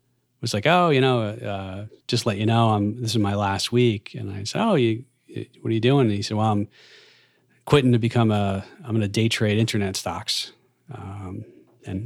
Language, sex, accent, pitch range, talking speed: English, male, American, 100-125 Hz, 220 wpm